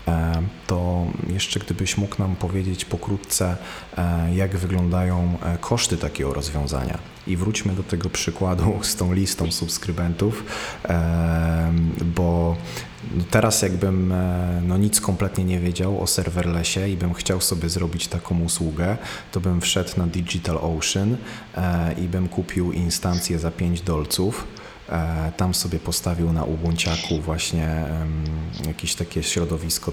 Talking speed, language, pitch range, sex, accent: 120 wpm, Polish, 80-95 Hz, male, native